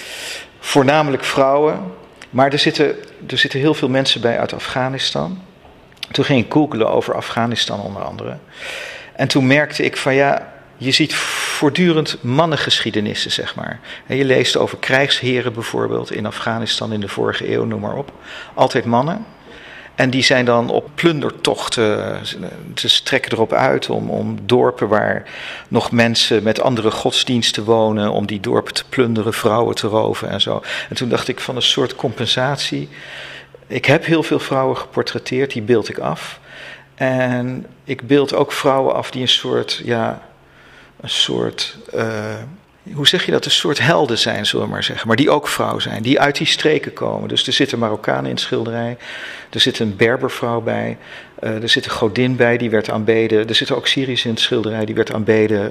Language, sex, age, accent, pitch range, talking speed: Dutch, male, 50-69, Dutch, 110-140 Hz, 175 wpm